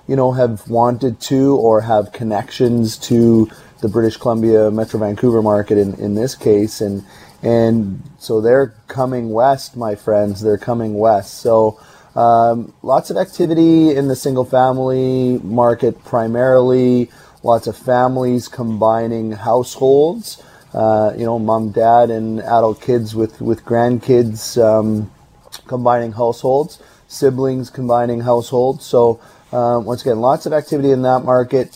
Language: English